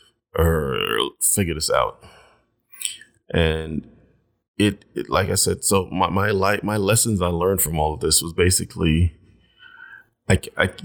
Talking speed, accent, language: 140 wpm, American, English